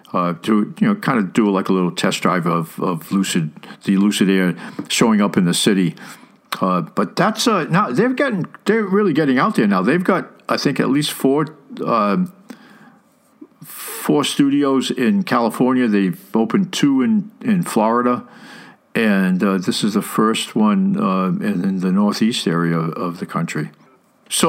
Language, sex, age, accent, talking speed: English, male, 50-69, American, 175 wpm